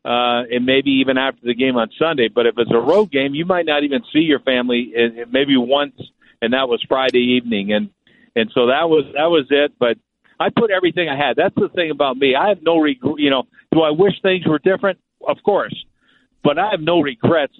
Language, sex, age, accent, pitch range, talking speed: English, male, 50-69, American, 125-160 Hz, 235 wpm